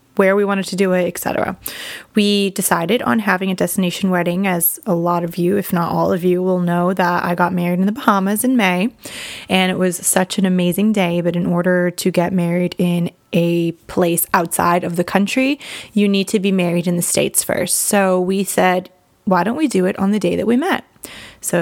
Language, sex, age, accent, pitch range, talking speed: English, female, 20-39, American, 180-205 Hz, 220 wpm